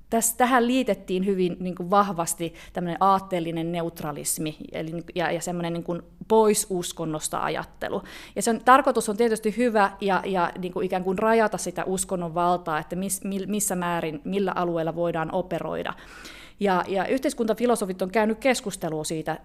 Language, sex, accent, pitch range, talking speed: Finnish, female, native, 175-215 Hz, 140 wpm